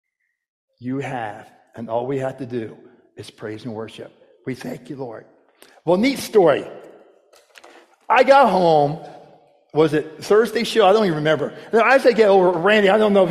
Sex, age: male, 50-69